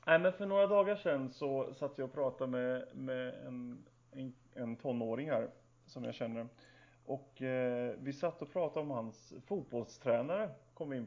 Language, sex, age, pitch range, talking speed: Swedish, male, 30-49, 125-165 Hz, 180 wpm